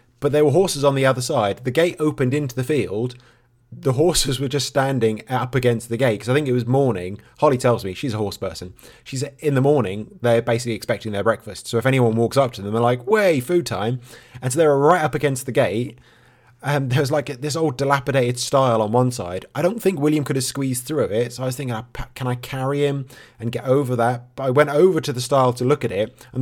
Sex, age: male, 20-39